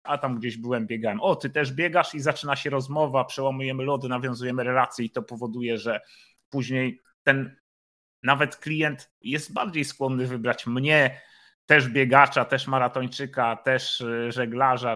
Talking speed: 145 wpm